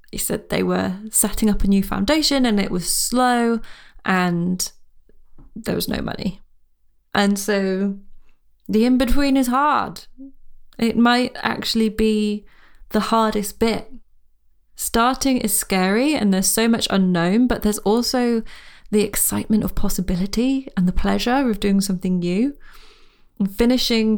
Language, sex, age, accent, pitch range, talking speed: English, female, 20-39, British, 195-230 Hz, 135 wpm